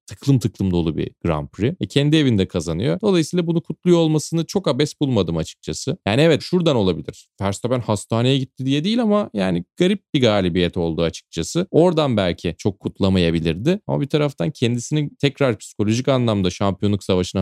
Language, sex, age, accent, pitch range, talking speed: Turkish, male, 30-49, native, 90-130 Hz, 165 wpm